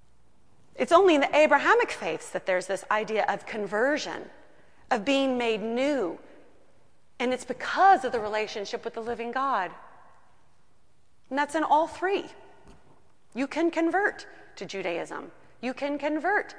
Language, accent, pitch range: English, American, 225-310 Hz